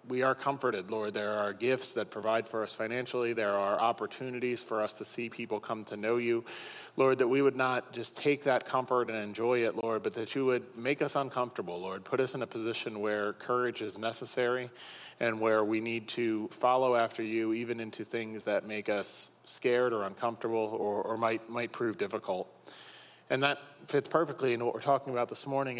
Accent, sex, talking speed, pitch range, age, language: American, male, 205 wpm, 115-130 Hz, 30-49, English